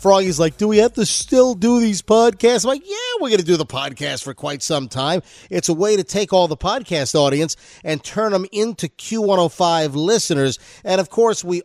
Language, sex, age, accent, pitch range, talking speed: English, male, 50-69, American, 155-195 Hz, 215 wpm